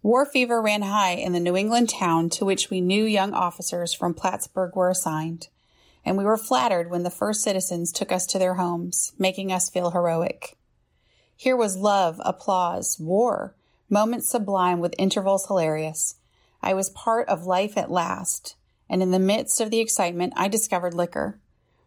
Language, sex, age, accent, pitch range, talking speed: English, female, 30-49, American, 170-195 Hz, 175 wpm